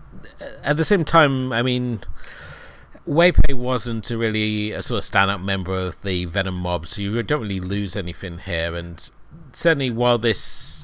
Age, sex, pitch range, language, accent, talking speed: 30-49, male, 90-110 Hz, English, British, 160 wpm